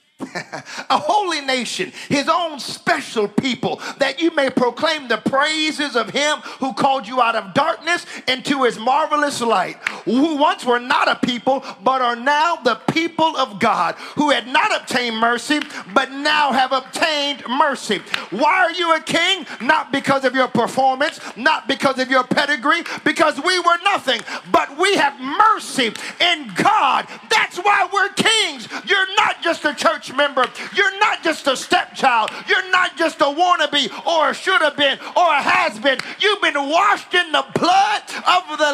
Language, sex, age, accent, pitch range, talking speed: English, male, 40-59, American, 265-345 Hz, 170 wpm